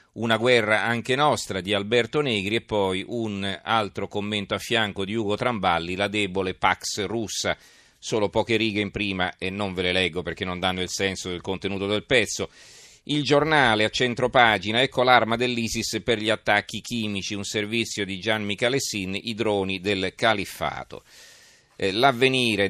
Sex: male